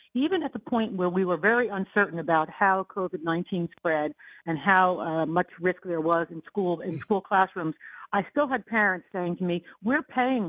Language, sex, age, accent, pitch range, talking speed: English, female, 50-69, American, 175-220 Hz, 195 wpm